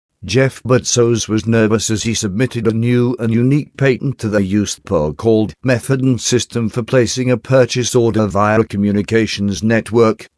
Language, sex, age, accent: English, male, 50-69, British